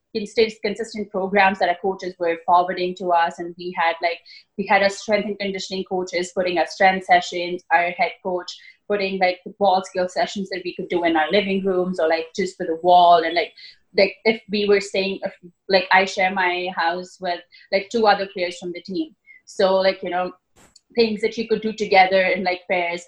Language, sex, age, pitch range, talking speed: English, female, 20-39, 180-205 Hz, 205 wpm